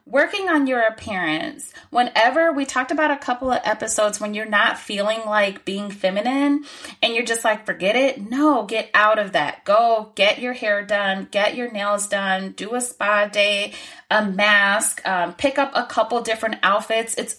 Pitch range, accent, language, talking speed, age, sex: 200-260 Hz, American, English, 185 wpm, 30-49, female